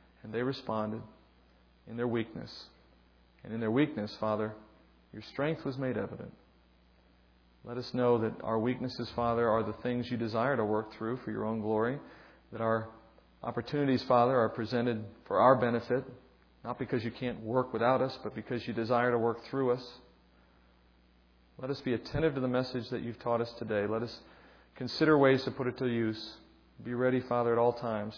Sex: male